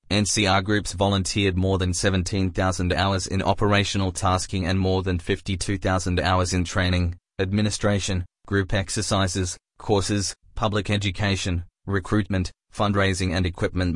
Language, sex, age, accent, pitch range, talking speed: English, male, 20-39, Australian, 90-105 Hz, 115 wpm